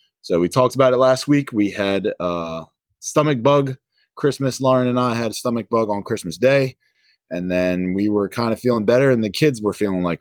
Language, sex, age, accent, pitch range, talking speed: English, male, 20-39, American, 95-135 Hz, 215 wpm